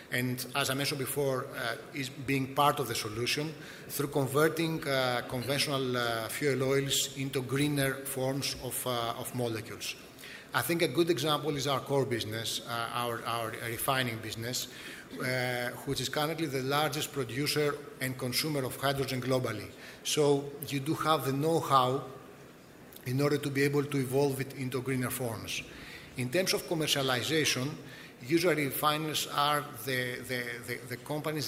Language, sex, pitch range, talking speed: English, male, 125-145 Hz, 155 wpm